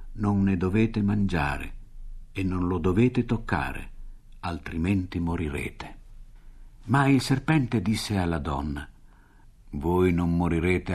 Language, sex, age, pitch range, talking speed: Italian, male, 60-79, 80-115 Hz, 110 wpm